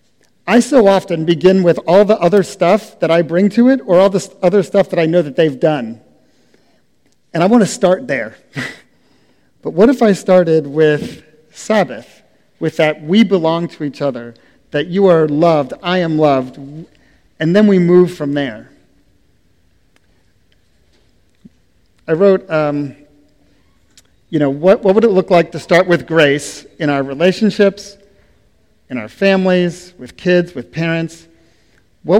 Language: English